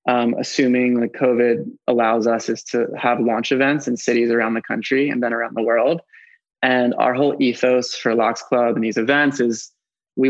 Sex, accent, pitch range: male, American, 120-135 Hz